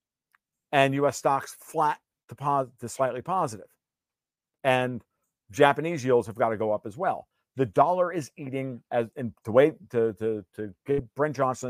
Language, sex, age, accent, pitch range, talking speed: English, male, 50-69, American, 115-150 Hz, 170 wpm